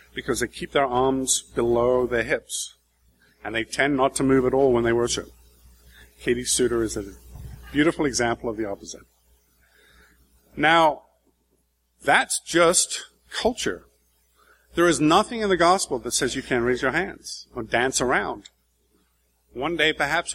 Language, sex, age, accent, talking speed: English, male, 50-69, American, 155 wpm